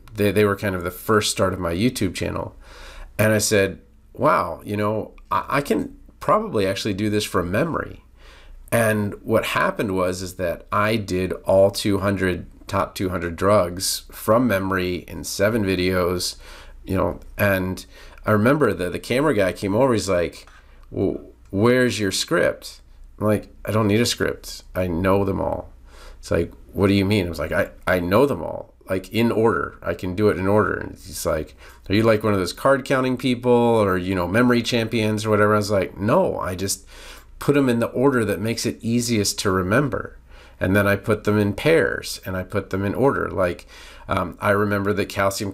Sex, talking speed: male, 200 wpm